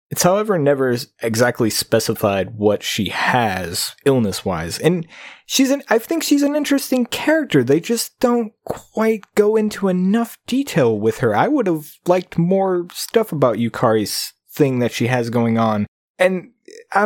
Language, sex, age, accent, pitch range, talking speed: English, male, 20-39, American, 115-175 Hz, 160 wpm